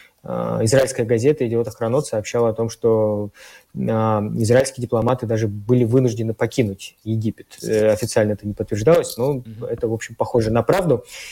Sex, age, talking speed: male, 20-39, 135 wpm